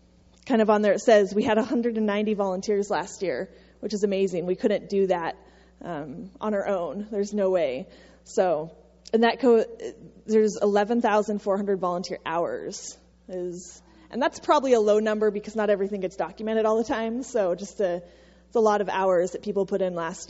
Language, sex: English, female